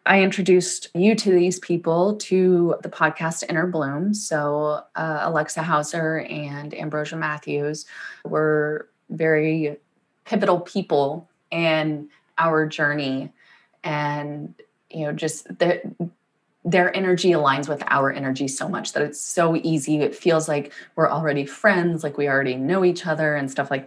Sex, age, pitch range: female, 20-39, 150-175 Hz